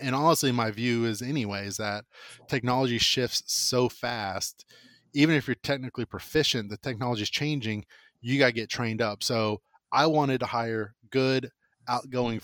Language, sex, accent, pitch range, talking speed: English, male, American, 110-130 Hz, 160 wpm